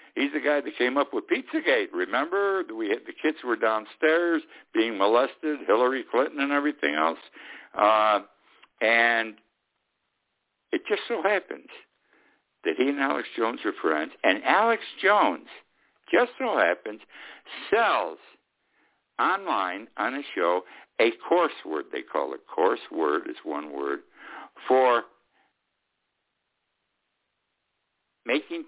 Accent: American